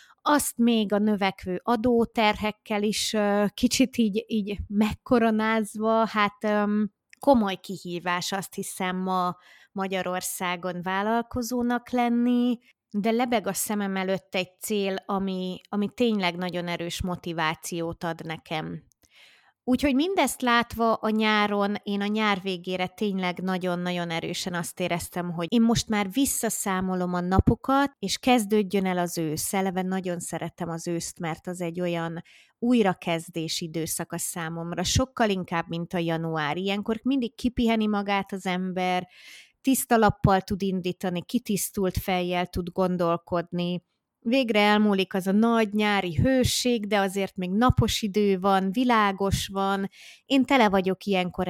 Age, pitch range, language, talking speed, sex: 20-39, 180-220 Hz, Hungarian, 130 wpm, female